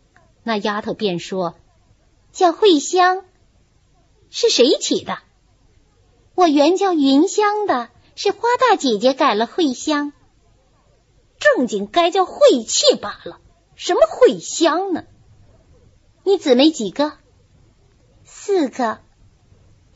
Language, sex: Chinese, female